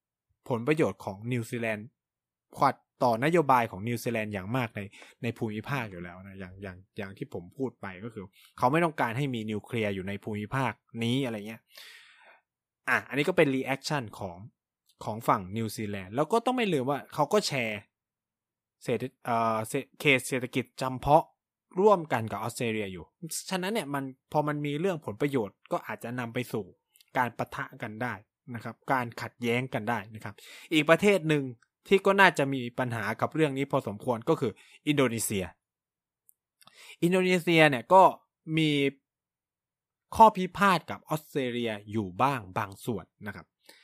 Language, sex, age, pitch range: Thai, male, 20-39, 110-150 Hz